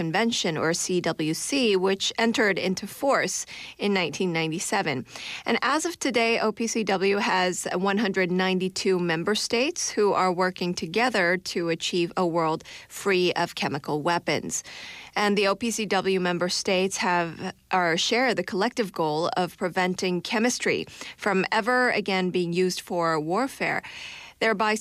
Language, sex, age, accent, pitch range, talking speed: English, female, 30-49, American, 170-210 Hz, 125 wpm